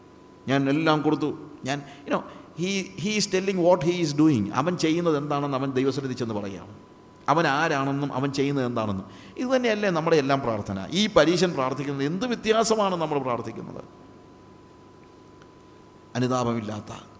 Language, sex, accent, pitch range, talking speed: Malayalam, male, native, 120-150 Hz, 115 wpm